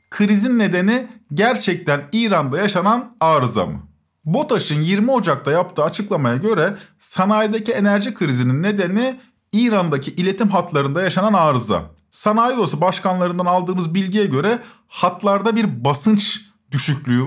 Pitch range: 145-215 Hz